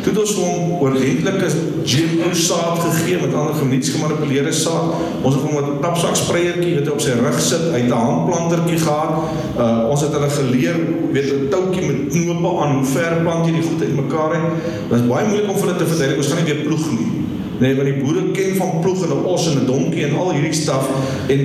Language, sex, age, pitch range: English, male, 50-69, 135-165 Hz